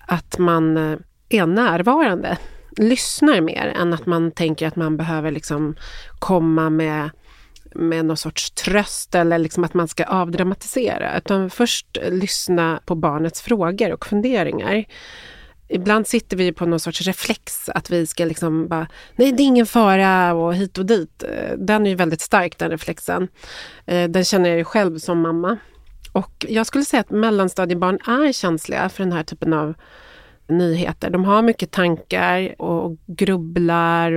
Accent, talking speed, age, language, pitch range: native, 155 wpm, 30-49, Swedish, 170-205 Hz